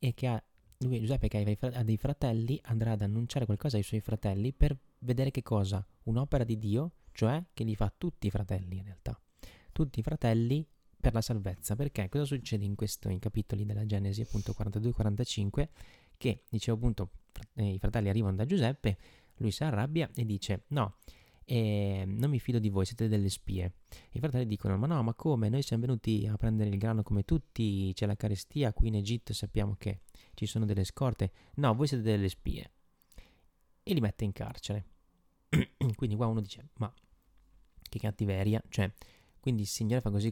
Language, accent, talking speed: Italian, native, 180 wpm